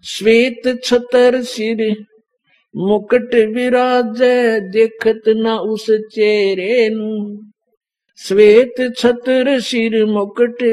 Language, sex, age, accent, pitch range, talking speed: Hindi, male, 50-69, native, 175-230 Hz, 65 wpm